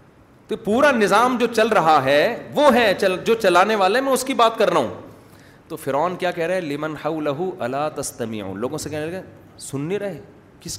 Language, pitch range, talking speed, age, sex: Urdu, 135-185 Hz, 195 wpm, 30-49, male